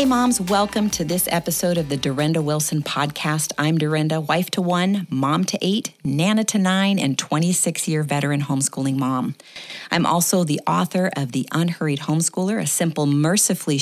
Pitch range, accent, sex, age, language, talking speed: 140-180 Hz, American, female, 40-59, English, 165 wpm